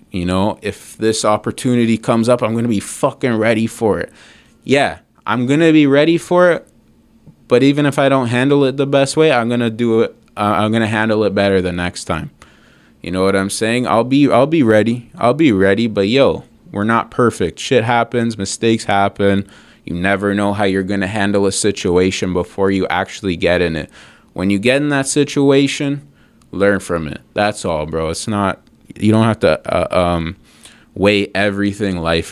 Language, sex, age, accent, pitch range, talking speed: English, male, 20-39, American, 95-120 Hz, 200 wpm